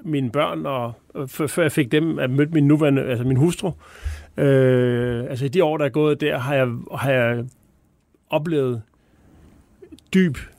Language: Danish